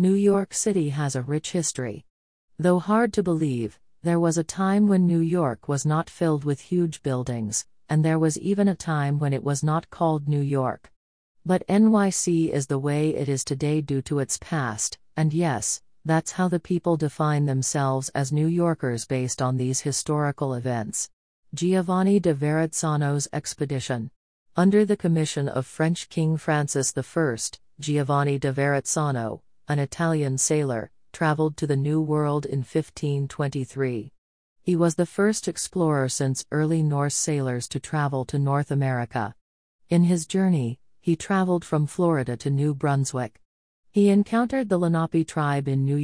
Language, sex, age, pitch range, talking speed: English, female, 40-59, 135-170 Hz, 160 wpm